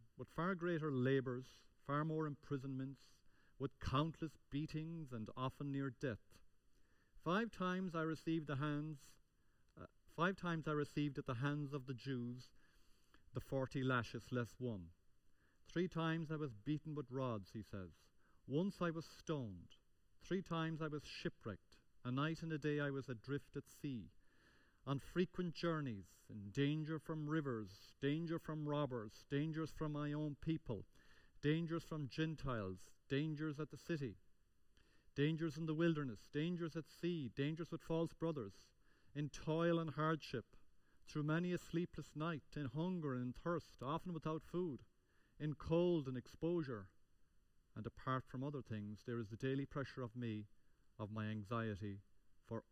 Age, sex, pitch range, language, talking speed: 40-59, male, 110-155 Hz, English, 150 wpm